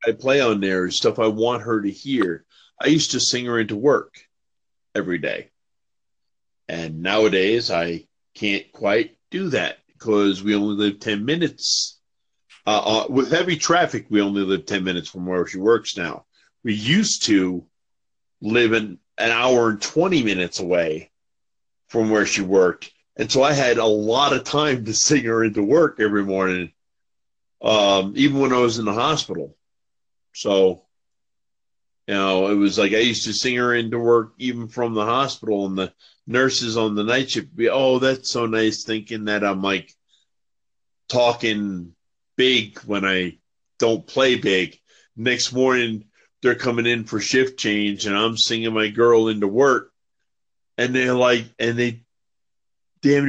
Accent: American